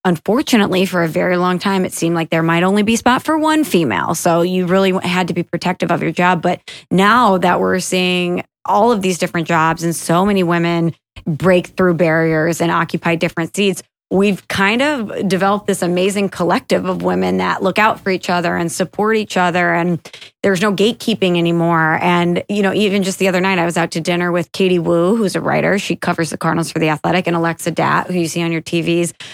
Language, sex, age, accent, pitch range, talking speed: English, female, 20-39, American, 170-195 Hz, 220 wpm